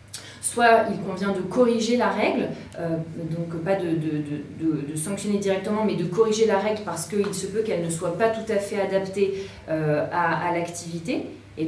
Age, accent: 30-49, French